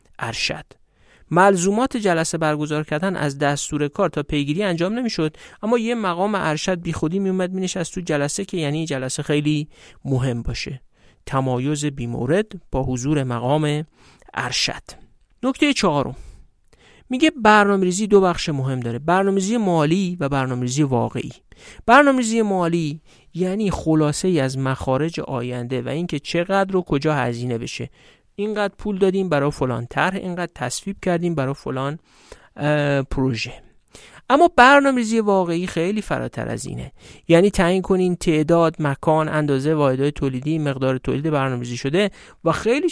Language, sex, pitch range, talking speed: Persian, male, 140-190 Hz, 135 wpm